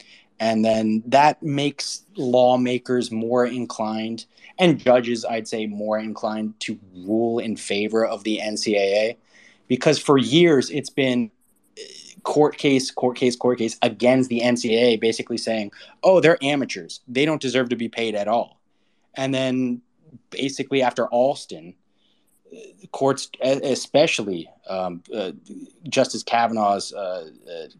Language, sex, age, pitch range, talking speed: English, male, 20-39, 110-130 Hz, 130 wpm